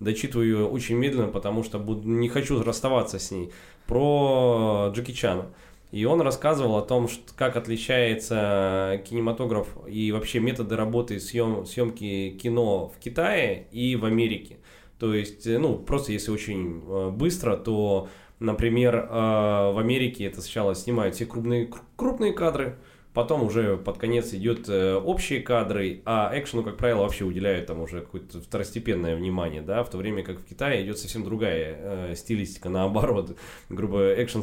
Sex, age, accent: male, 20-39, native